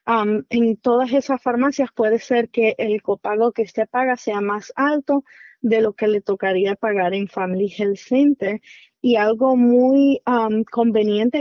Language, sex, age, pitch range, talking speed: Spanish, female, 30-49, 215-255 Hz, 165 wpm